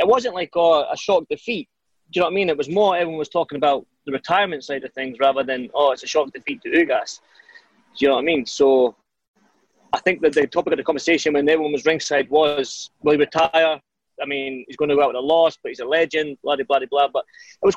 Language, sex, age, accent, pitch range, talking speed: English, male, 20-39, British, 155-235 Hz, 265 wpm